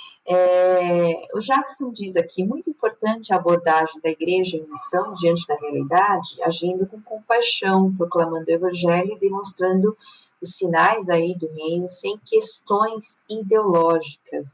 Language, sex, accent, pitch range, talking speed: Portuguese, female, Brazilian, 170-230 Hz, 130 wpm